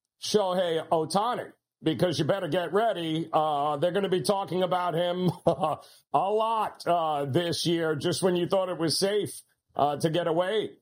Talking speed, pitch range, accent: 170 wpm, 155-190 Hz, American